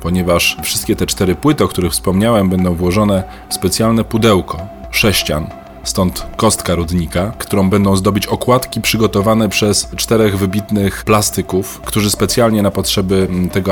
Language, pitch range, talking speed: Polish, 90-105 Hz, 135 wpm